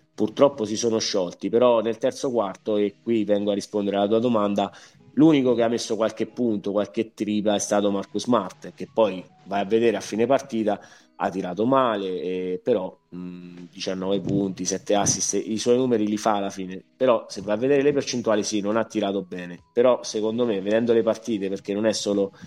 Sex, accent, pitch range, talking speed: male, native, 100-115 Hz, 200 wpm